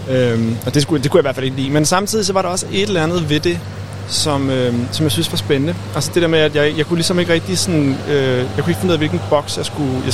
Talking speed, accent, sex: 315 wpm, native, male